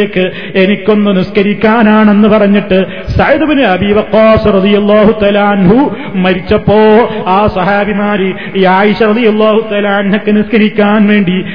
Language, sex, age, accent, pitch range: Malayalam, male, 30-49, native, 205-215 Hz